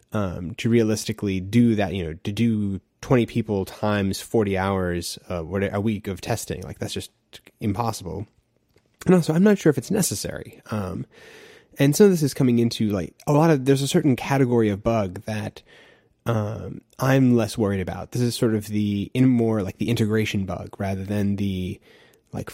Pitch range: 105-135 Hz